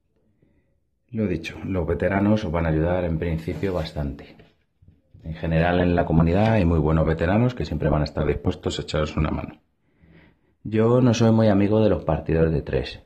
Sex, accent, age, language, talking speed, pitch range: male, Spanish, 40-59, Spanish, 185 wpm, 75-95 Hz